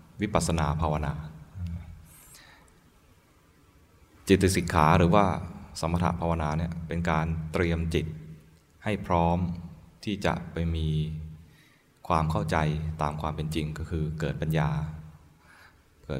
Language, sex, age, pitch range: Thai, male, 20-39, 80-85 Hz